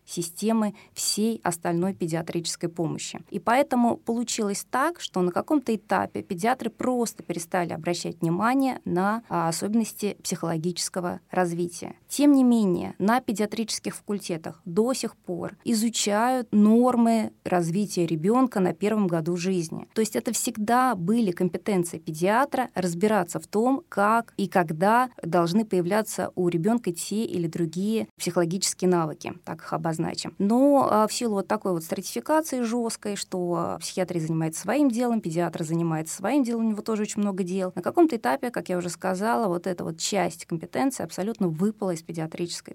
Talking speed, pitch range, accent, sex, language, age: 145 wpm, 180-230 Hz, native, female, Russian, 20-39